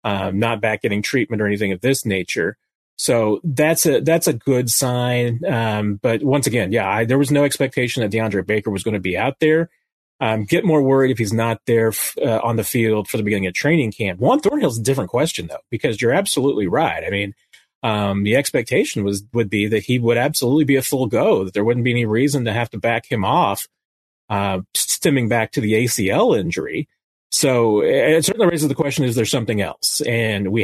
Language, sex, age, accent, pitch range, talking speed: English, male, 30-49, American, 110-135 Hz, 220 wpm